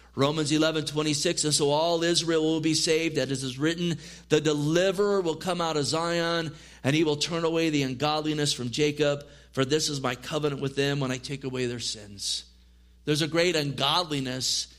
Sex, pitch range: male, 140-160 Hz